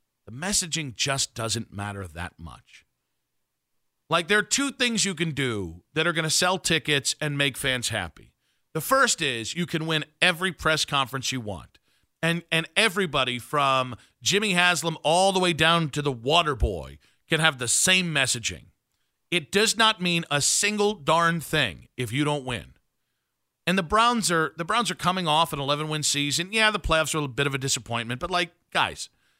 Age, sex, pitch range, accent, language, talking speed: 50-69, male, 130-185 Hz, American, English, 185 wpm